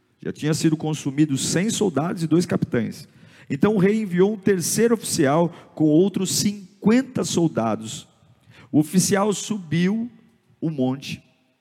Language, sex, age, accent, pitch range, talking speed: Portuguese, male, 50-69, Brazilian, 135-185 Hz, 130 wpm